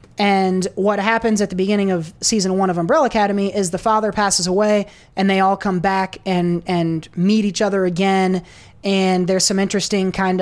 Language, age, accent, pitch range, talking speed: English, 20-39, American, 175-210 Hz, 190 wpm